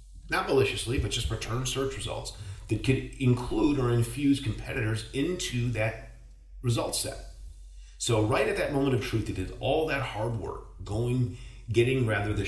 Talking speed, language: 165 wpm, English